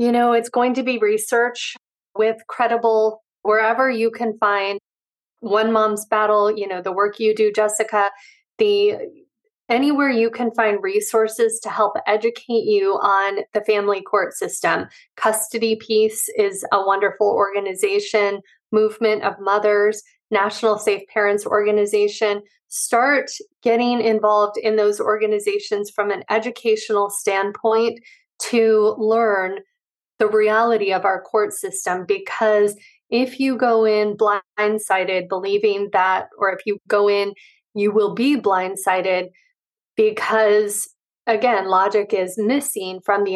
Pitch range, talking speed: 205-240 Hz, 130 wpm